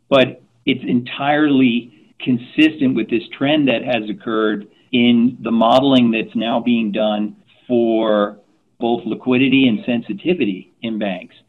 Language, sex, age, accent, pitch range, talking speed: English, male, 50-69, American, 105-125 Hz, 125 wpm